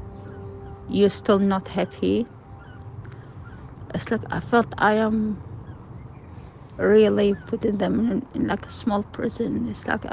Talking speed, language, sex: 125 wpm, English, female